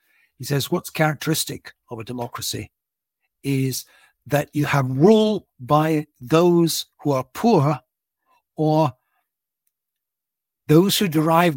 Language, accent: English, British